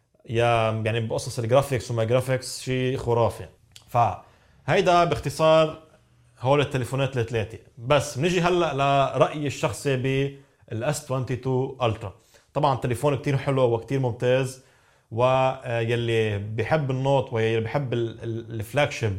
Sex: male